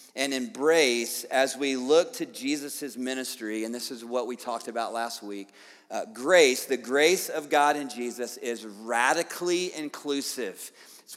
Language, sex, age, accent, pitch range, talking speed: English, male, 40-59, American, 135-165 Hz, 155 wpm